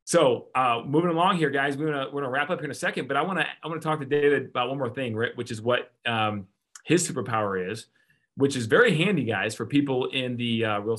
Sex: male